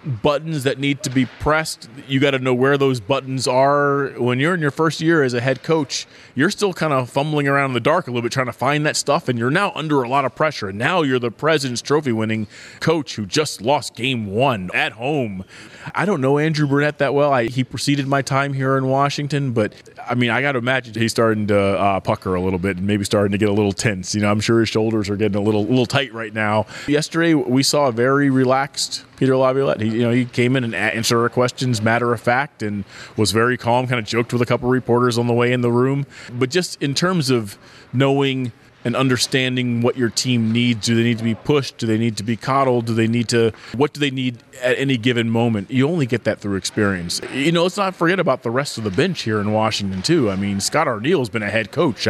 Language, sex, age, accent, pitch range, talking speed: English, male, 20-39, American, 115-145 Hz, 250 wpm